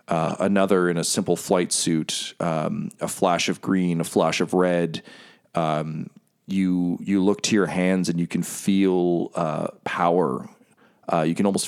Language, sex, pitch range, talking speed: English, male, 80-95 Hz, 170 wpm